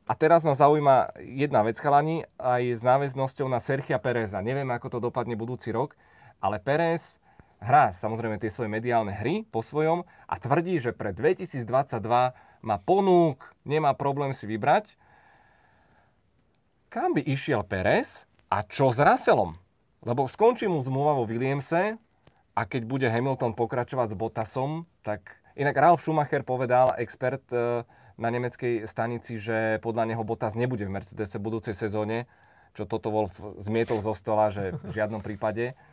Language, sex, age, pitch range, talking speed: Czech, male, 30-49, 110-145 Hz, 150 wpm